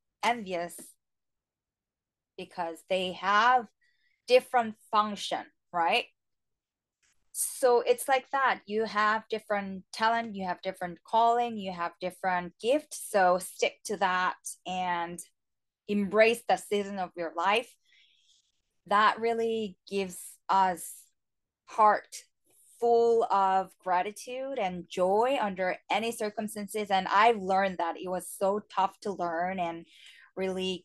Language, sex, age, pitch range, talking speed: English, female, 20-39, 180-225 Hz, 115 wpm